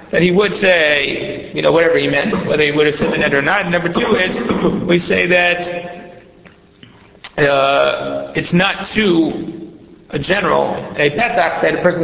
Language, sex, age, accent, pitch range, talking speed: English, male, 40-59, American, 160-185 Hz, 175 wpm